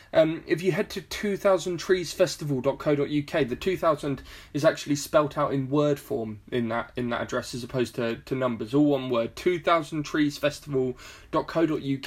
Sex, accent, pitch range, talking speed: male, British, 130-160 Hz, 145 wpm